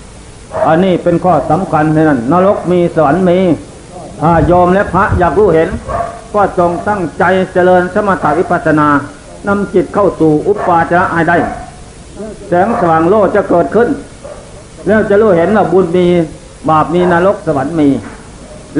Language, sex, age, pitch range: Thai, male, 60-79, 160-195 Hz